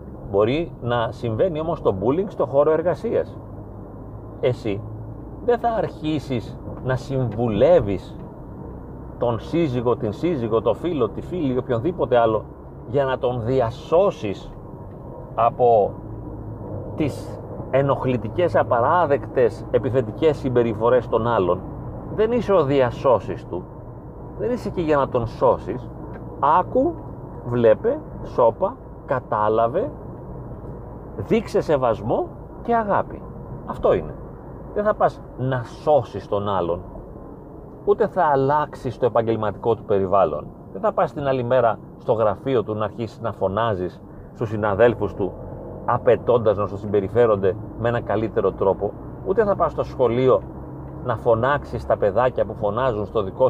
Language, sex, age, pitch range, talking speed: Greek, male, 40-59, 110-145 Hz, 125 wpm